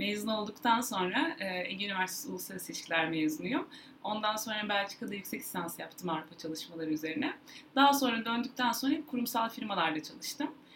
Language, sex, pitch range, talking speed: Turkish, female, 195-270 Hz, 140 wpm